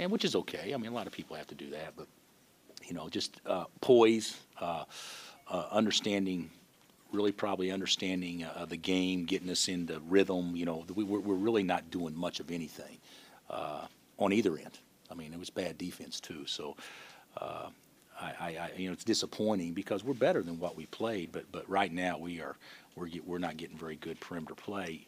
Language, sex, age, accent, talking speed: English, male, 40-59, American, 200 wpm